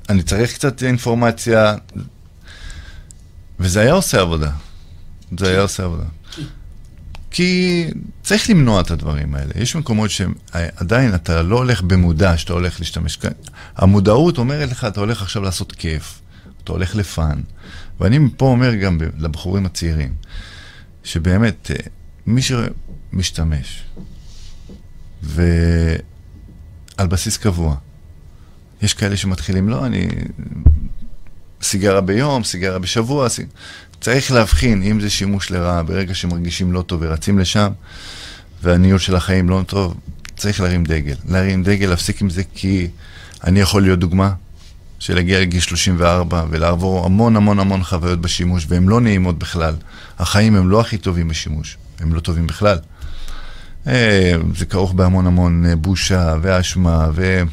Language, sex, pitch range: Hebrew, male, 85-100 Hz